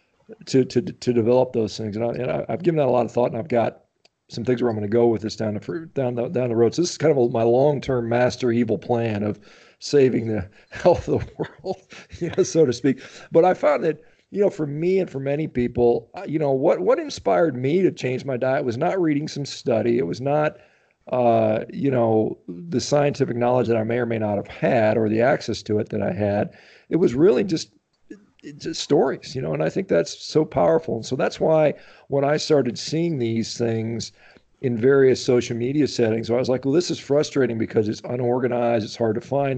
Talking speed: 230 wpm